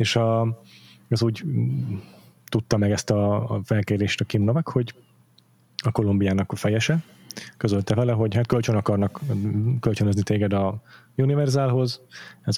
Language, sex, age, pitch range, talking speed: Hungarian, male, 20-39, 105-120 Hz, 135 wpm